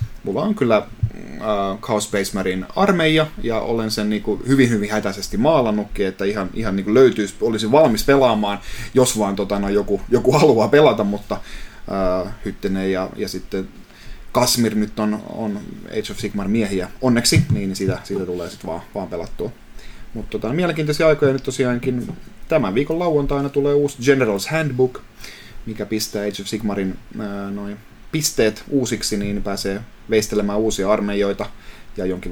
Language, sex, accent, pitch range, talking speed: Finnish, male, native, 100-120 Hz, 150 wpm